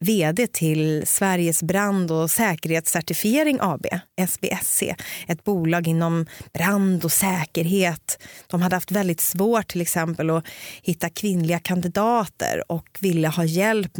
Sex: female